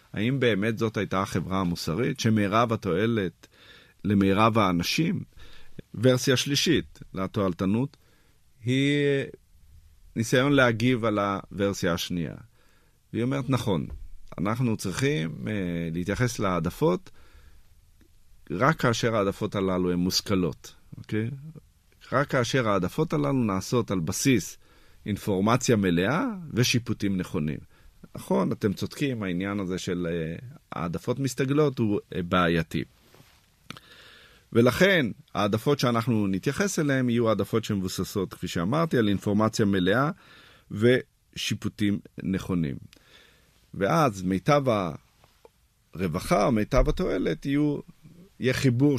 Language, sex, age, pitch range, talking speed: Hebrew, male, 50-69, 95-130 Hz, 95 wpm